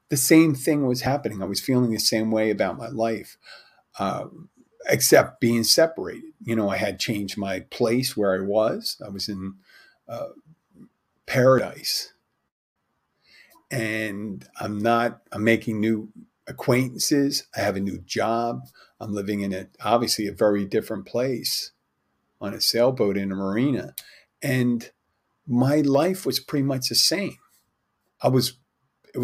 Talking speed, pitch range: 145 wpm, 100-125 Hz